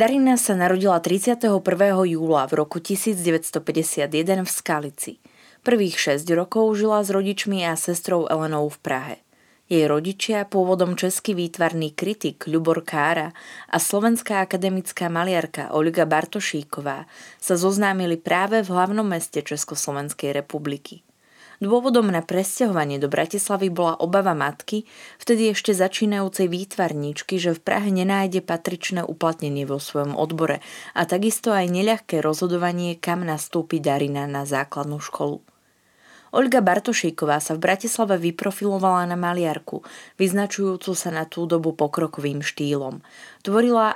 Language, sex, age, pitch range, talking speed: Slovak, female, 20-39, 155-195 Hz, 125 wpm